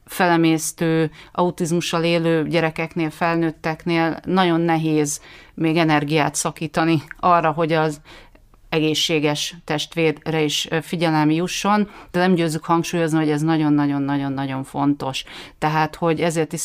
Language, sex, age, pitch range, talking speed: Hungarian, female, 30-49, 150-165 Hz, 110 wpm